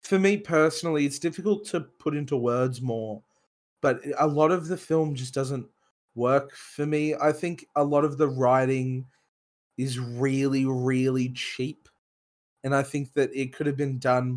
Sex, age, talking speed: male, 20-39, 170 wpm